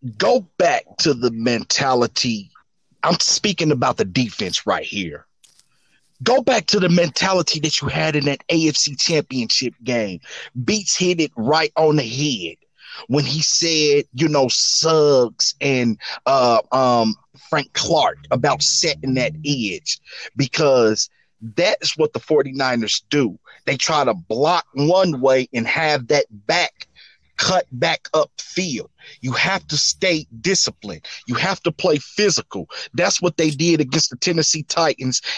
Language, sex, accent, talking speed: English, male, American, 145 wpm